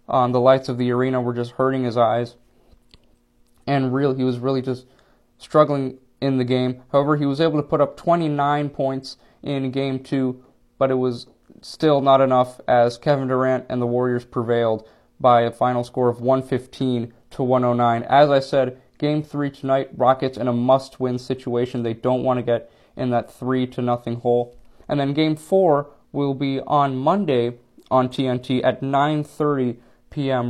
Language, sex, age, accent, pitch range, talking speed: English, male, 20-39, American, 125-145 Hz, 175 wpm